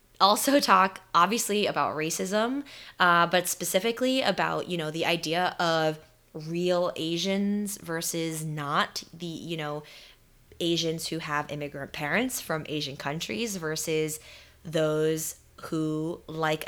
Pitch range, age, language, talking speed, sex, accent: 160-200 Hz, 20-39, English, 120 wpm, female, American